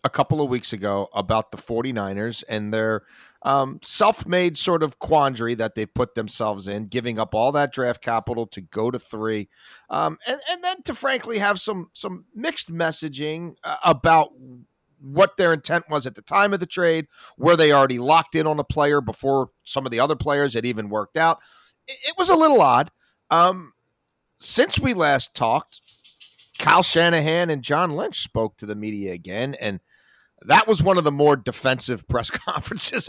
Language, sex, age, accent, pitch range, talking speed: English, male, 40-59, American, 115-165 Hz, 180 wpm